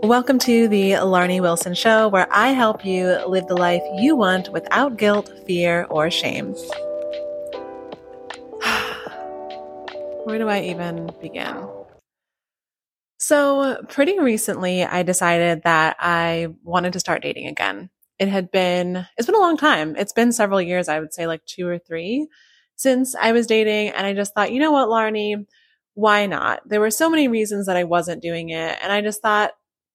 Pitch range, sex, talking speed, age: 180-260 Hz, female, 170 wpm, 20-39